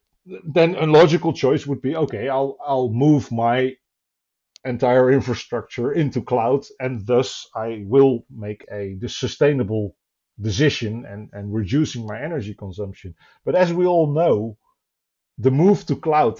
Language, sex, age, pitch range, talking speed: English, male, 50-69, 110-135 Hz, 145 wpm